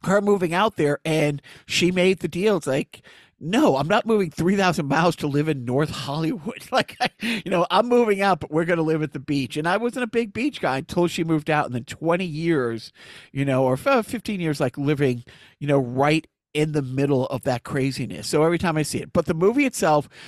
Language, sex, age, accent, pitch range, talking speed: English, male, 50-69, American, 145-195 Hz, 230 wpm